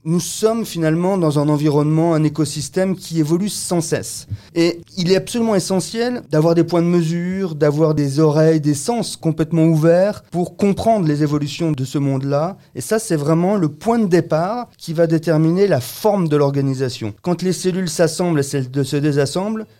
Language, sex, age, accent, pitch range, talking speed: French, male, 30-49, French, 135-175 Hz, 175 wpm